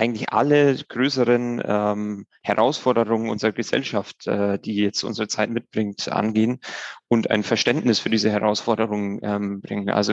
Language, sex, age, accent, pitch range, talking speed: German, male, 30-49, German, 105-115 Hz, 135 wpm